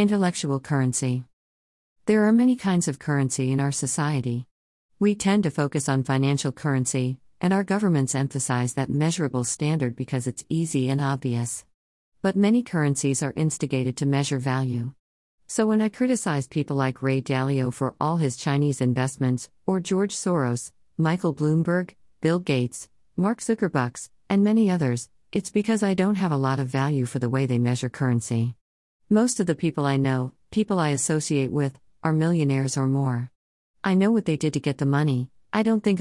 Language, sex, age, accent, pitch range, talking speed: English, female, 50-69, American, 130-165 Hz, 175 wpm